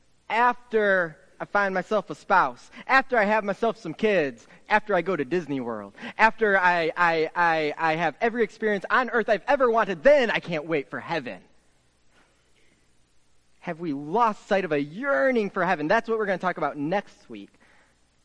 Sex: male